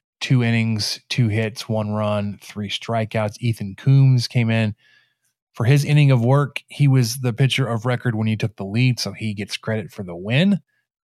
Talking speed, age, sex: 190 wpm, 30-49, male